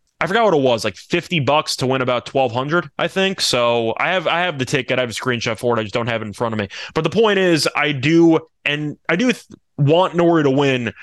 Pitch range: 125-160 Hz